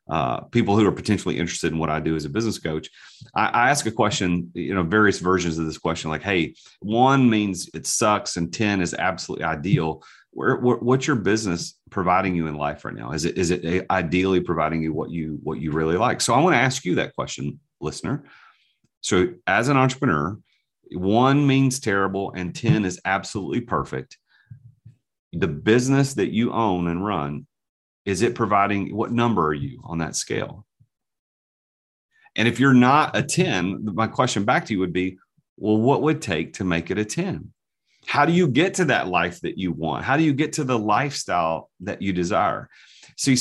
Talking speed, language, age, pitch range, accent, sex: 195 wpm, English, 40-59, 85-120 Hz, American, male